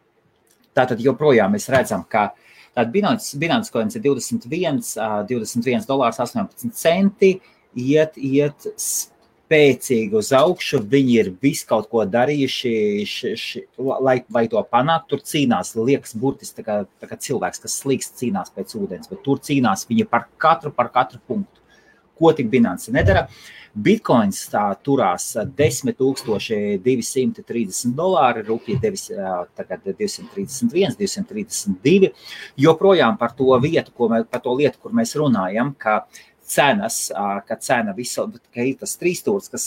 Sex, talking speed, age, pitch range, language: male, 125 wpm, 30-49, 120-195 Hz, English